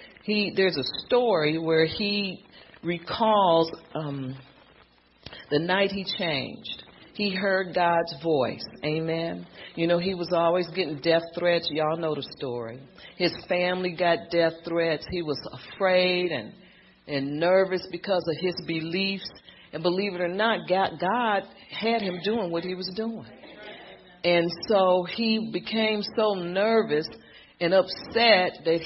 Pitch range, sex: 155-185 Hz, female